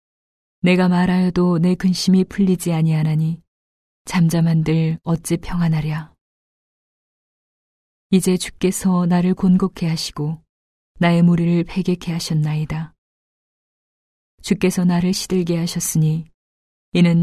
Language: Korean